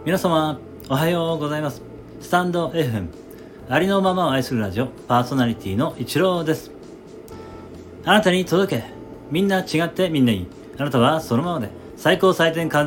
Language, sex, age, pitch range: Japanese, male, 40-59, 110-160 Hz